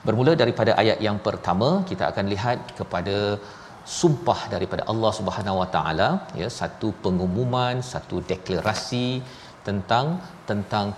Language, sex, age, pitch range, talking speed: Malayalam, male, 40-59, 95-115 Hz, 120 wpm